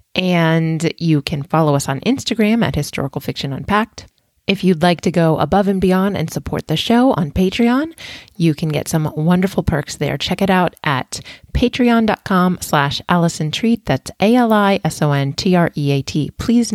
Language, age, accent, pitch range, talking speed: English, 30-49, American, 155-205 Hz, 155 wpm